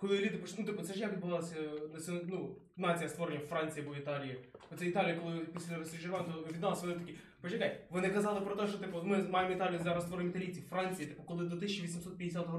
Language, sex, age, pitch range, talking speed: Ukrainian, male, 20-39, 155-200 Hz, 215 wpm